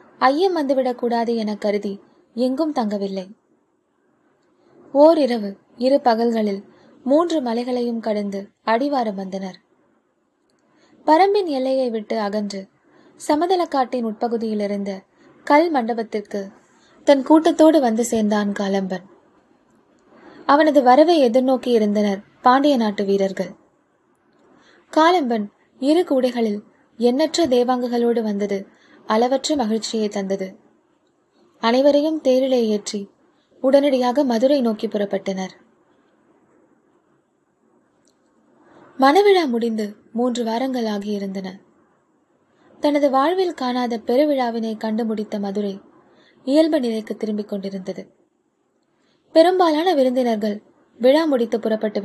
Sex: female